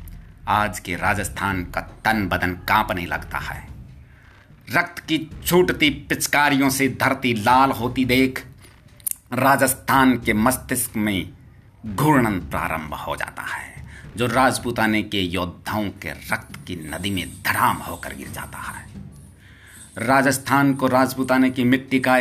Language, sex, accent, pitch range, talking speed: Hindi, male, native, 90-130 Hz, 125 wpm